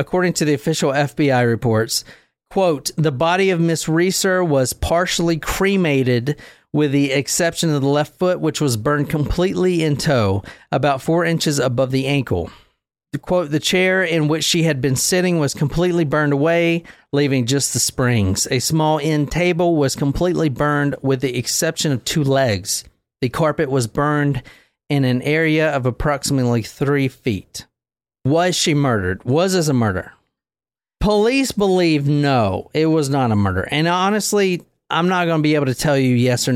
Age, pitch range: 40-59, 125-165 Hz